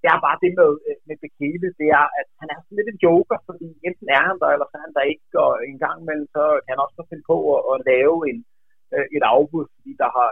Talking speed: 270 wpm